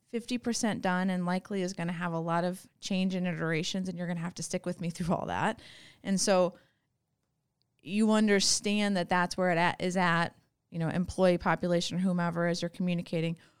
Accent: American